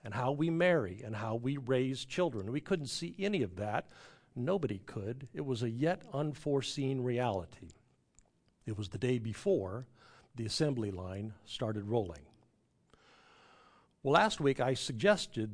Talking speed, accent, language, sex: 145 wpm, American, English, male